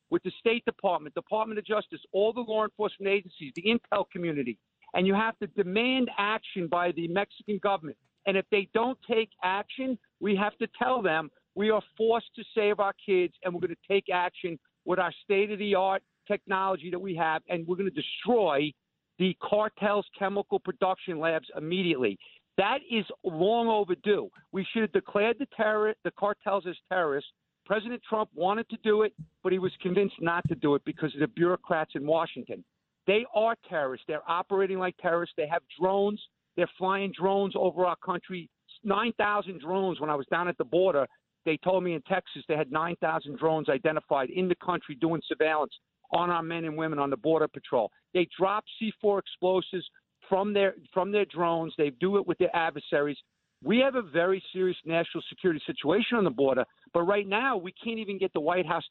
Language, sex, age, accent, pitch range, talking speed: English, male, 50-69, American, 165-205 Hz, 190 wpm